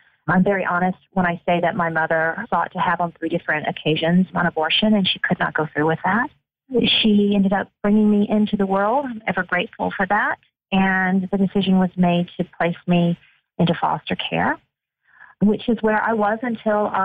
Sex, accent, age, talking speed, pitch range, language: female, American, 40-59, 195 wpm, 175-205 Hz, English